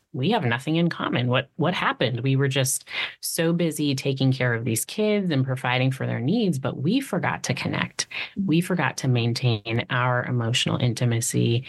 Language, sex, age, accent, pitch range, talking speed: English, female, 30-49, American, 125-140 Hz, 180 wpm